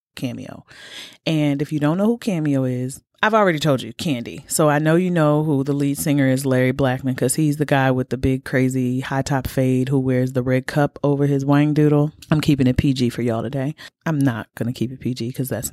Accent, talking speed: American, 235 wpm